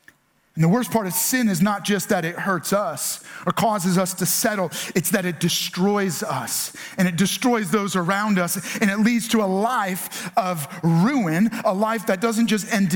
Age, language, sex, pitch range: 30-49, English, male, 180-215 Hz